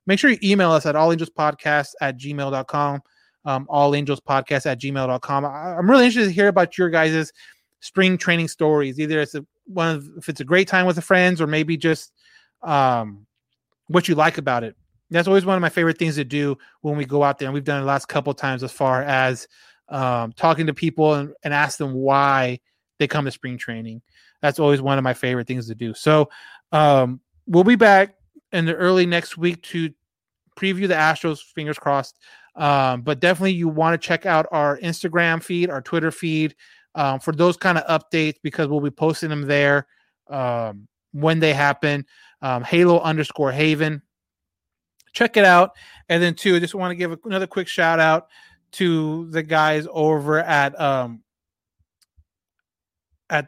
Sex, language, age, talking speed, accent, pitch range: male, English, 30-49, 190 wpm, American, 140-170 Hz